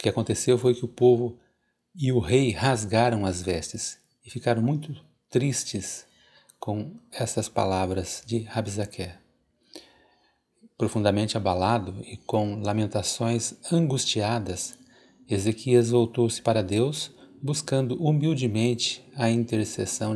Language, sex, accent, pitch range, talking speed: Portuguese, male, Brazilian, 105-125 Hz, 105 wpm